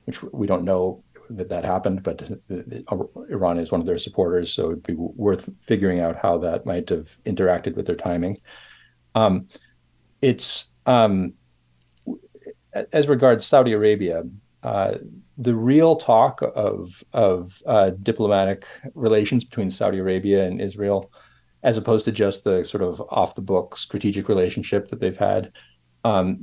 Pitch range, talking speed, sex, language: 85-115 Hz, 145 wpm, male, English